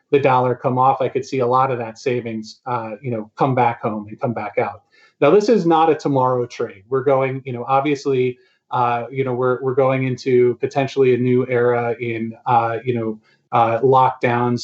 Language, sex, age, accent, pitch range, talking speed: English, male, 30-49, American, 120-145 Hz, 210 wpm